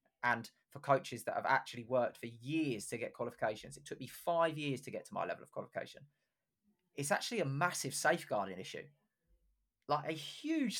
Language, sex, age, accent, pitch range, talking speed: English, male, 20-39, British, 135-185 Hz, 185 wpm